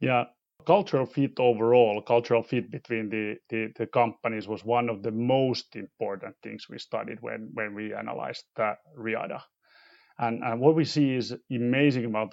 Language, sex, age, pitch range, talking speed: English, male, 30-49, 115-135 Hz, 170 wpm